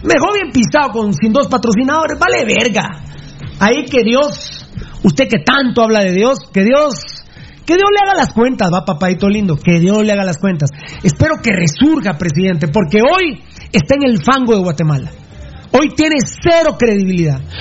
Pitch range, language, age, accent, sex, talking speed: 195-305 Hz, Spanish, 40-59, Mexican, male, 175 wpm